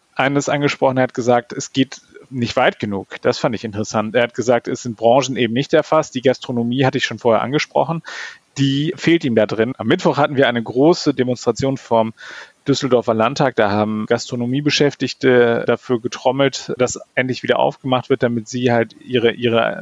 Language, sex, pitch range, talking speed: German, male, 115-140 Hz, 180 wpm